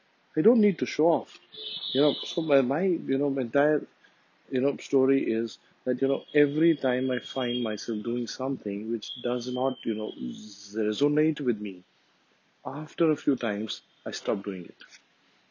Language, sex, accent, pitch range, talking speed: English, male, Indian, 115-150 Hz, 175 wpm